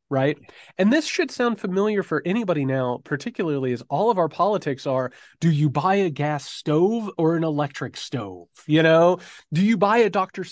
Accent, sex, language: American, male, English